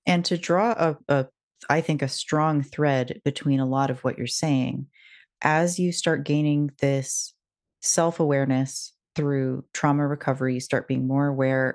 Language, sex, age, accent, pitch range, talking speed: English, female, 30-49, American, 130-150 Hz, 160 wpm